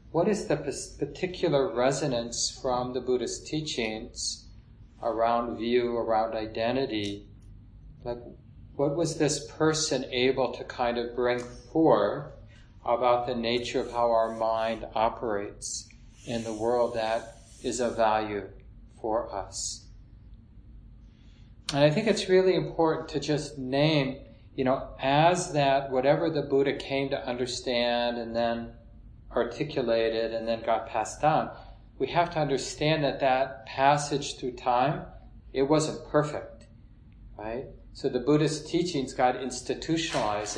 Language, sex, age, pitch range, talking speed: English, male, 40-59, 115-140 Hz, 130 wpm